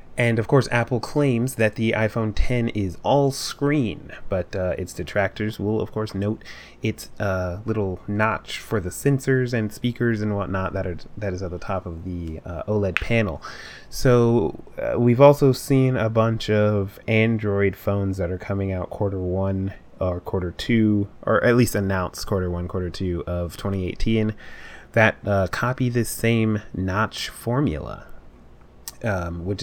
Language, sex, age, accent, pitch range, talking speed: English, male, 30-49, American, 95-120 Hz, 160 wpm